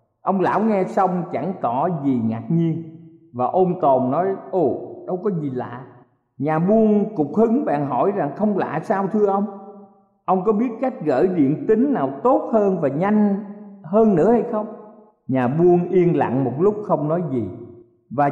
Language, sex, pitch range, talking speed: Vietnamese, male, 150-200 Hz, 185 wpm